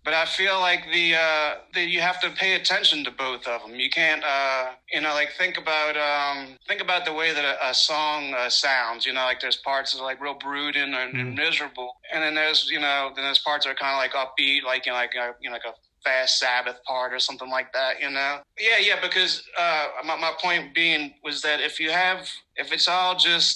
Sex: male